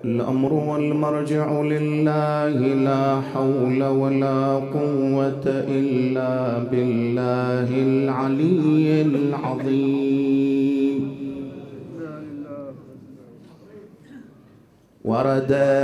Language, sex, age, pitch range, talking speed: English, male, 50-69, 135-160 Hz, 45 wpm